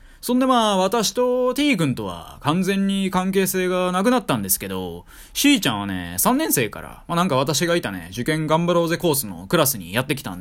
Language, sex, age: Japanese, male, 20-39